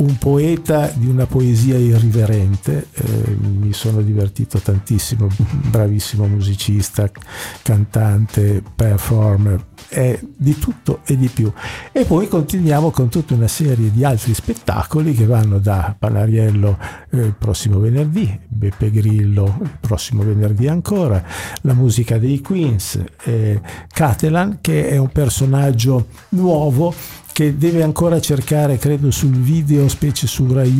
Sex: male